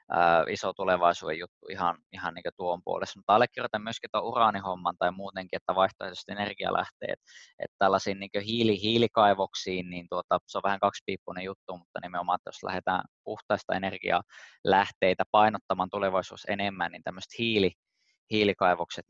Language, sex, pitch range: Finnish, male, 95-115 Hz